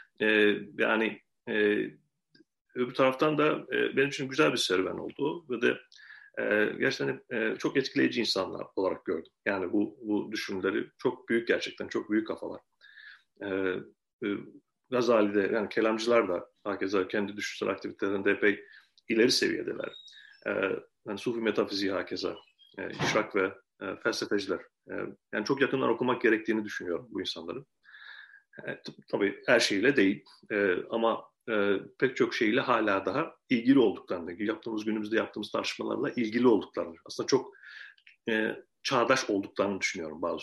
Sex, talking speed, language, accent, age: male, 140 wpm, Turkish, native, 40-59